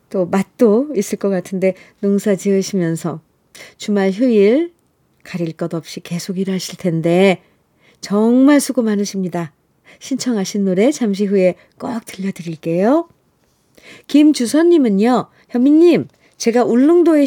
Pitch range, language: 190-250 Hz, Korean